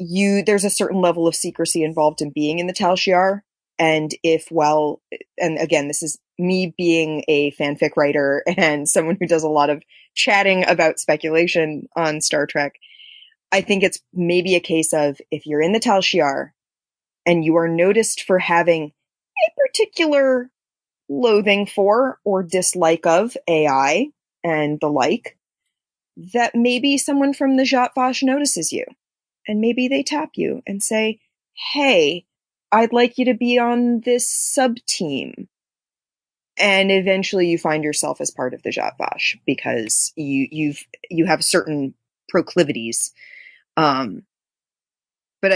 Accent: American